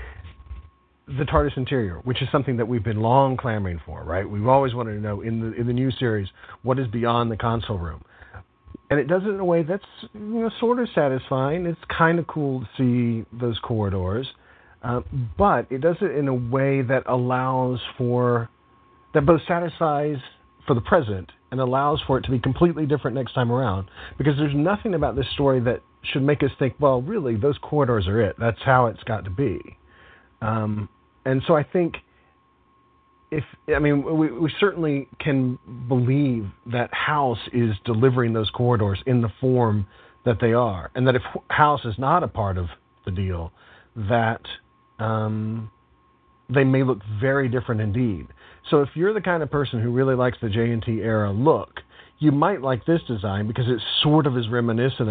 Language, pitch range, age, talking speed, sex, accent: English, 110-140 Hz, 40-59, 185 wpm, male, American